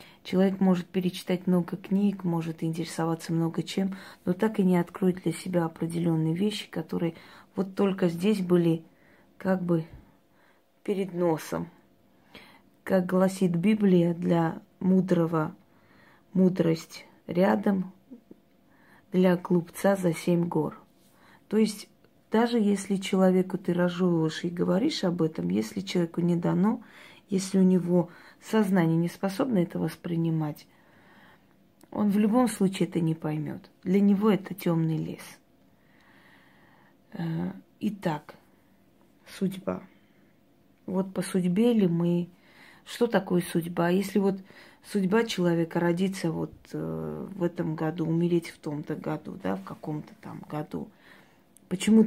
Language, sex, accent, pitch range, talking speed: Russian, female, native, 170-195 Hz, 120 wpm